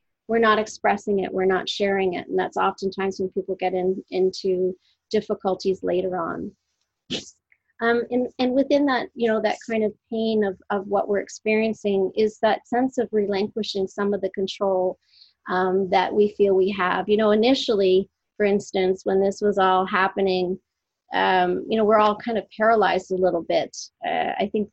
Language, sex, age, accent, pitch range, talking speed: English, female, 30-49, American, 190-215 Hz, 180 wpm